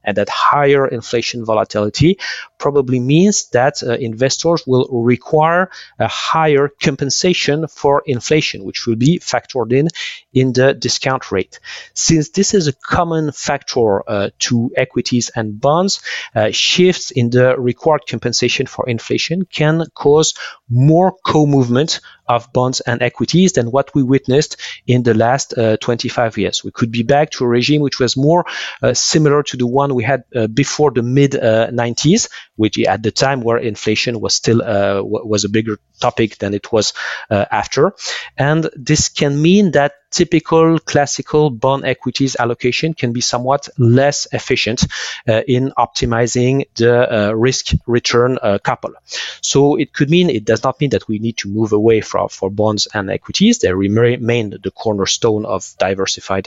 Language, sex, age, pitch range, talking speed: English, male, 40-59, 115-145 Hz, 165 wpm